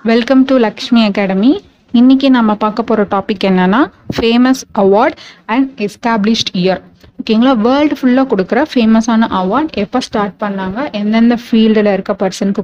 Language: Tamil